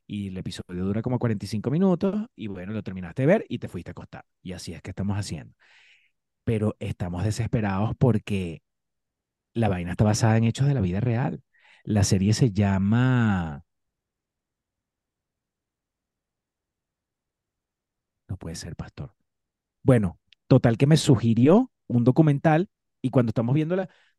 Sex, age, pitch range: male, 30-49, 105-150 Hz